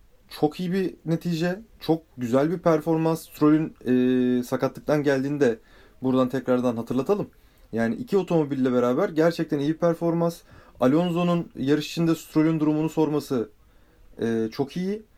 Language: Turkish